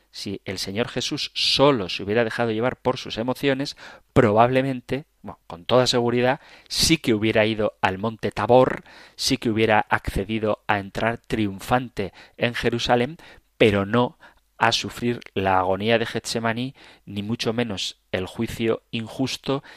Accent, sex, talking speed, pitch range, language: Spanish, male, 145 wpm, 105-130 Hz, Spanish